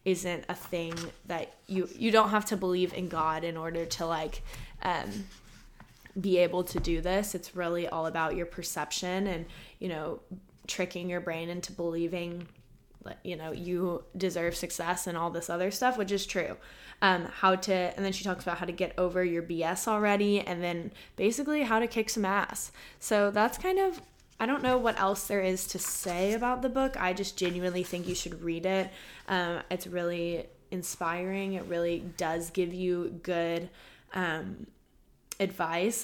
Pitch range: 170-195 Hz